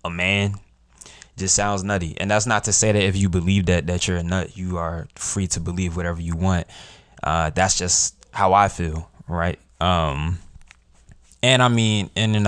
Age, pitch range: 20-39, 80-95 Hz